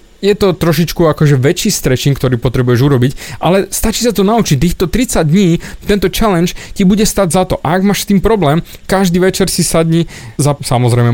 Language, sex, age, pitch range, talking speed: Slovak, male, 30-49, 140-185 Hz, 195 wpm